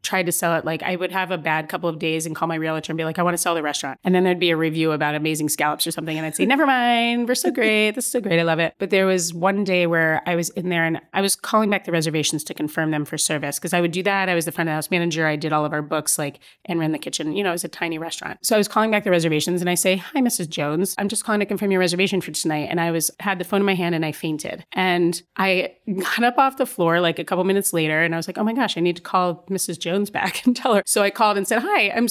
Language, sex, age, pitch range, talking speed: English, female, 30-49, 160-195 Hz, 325 wpm